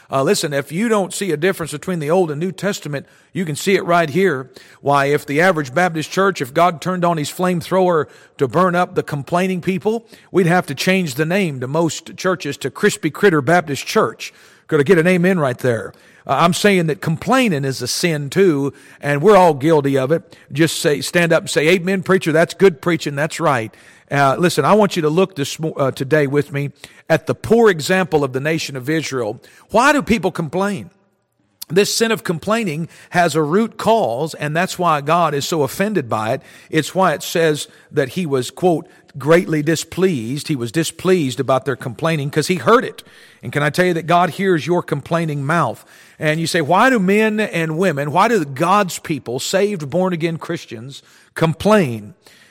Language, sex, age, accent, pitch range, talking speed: English, male, 50-69, American, 145-185 Hz, 200 wpm